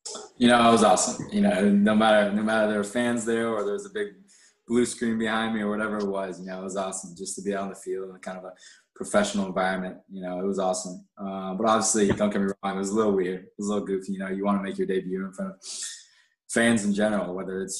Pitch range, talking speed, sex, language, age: 95-110 Hz, 285 wpm, male, English, 20-39